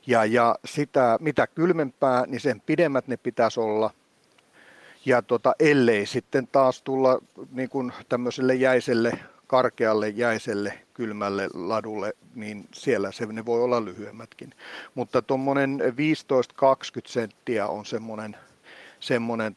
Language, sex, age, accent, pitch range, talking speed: Finnish, male, 50-69, native, 115-130 Hz, 115 wpm